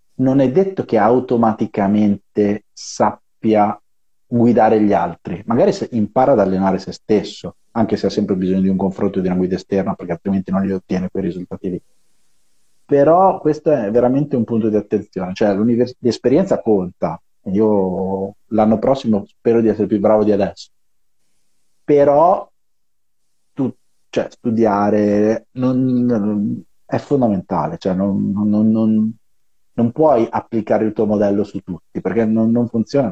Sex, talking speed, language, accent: male, 145 wpm, Italian, native